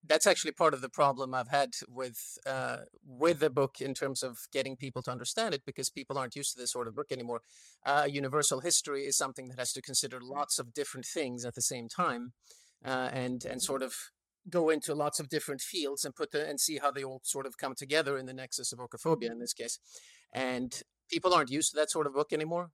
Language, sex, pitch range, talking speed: German, male, 125-145 Hz, 235 wpm